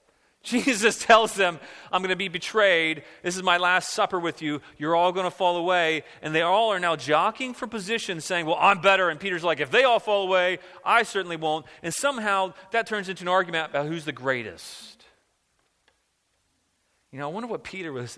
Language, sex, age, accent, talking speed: English, male, 40-59, American, 205 wpm